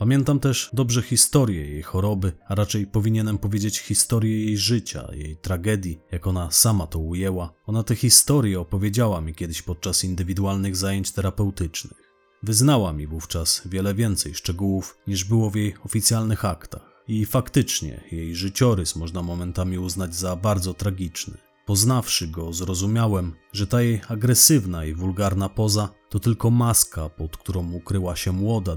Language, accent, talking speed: Polish, native, 145 wpm